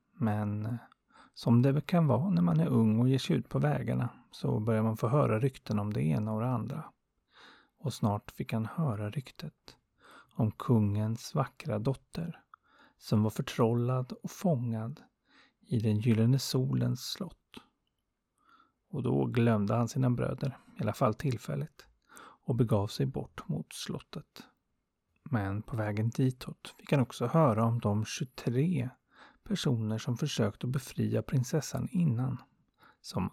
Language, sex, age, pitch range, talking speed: Swedish, male, 30-49, 110-140 Hz, 150 wpm